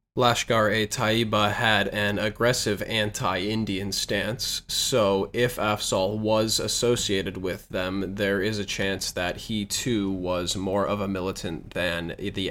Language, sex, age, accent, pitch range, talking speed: English, male, 20-39, American, 95-110 Hz, 130 wpm